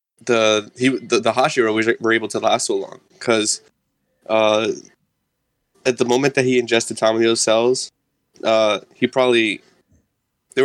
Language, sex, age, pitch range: English, male, 10-29, 110-130 Hz